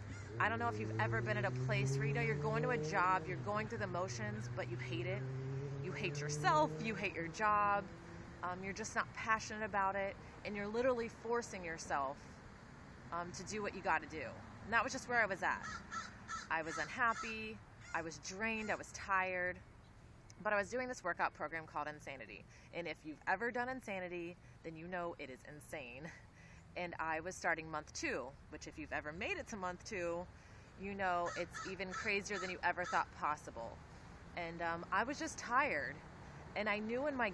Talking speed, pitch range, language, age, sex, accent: 205 wpm, 150-205 Hz, English, 20-39, female, American